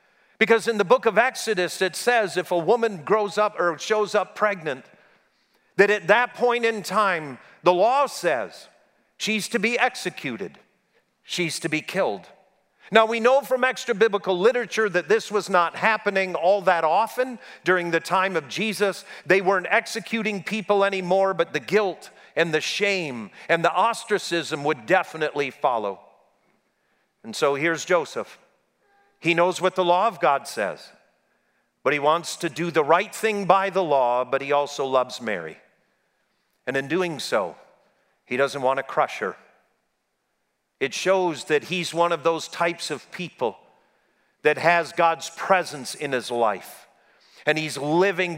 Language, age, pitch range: English, 50-69, 150-205 Hz